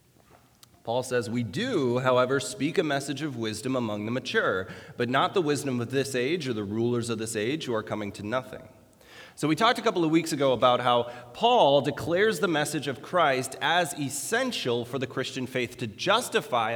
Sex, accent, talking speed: male, American, 195 wpm